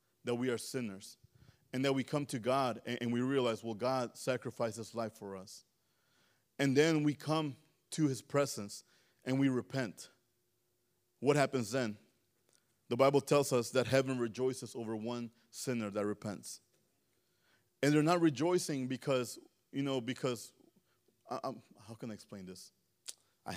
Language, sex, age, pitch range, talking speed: English, male, 30-49, 120-165 Hz, 155 wpm